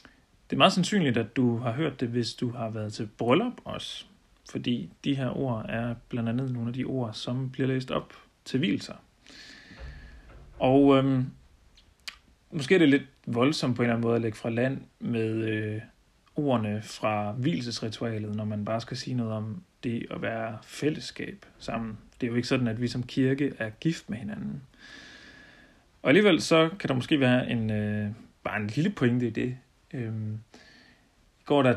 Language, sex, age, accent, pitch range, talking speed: Danish, male, 40-59, native, 110-135 Hz, 185 wpm